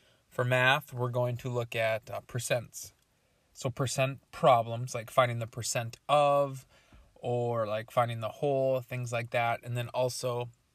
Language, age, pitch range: English, 20-39, 115-125 Hz